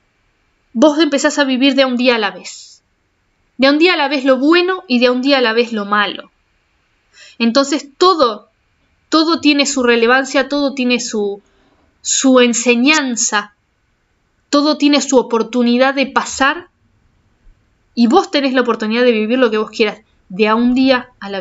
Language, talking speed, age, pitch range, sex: Spanish, 170 wpm, 20-39, 225-295 Hz, female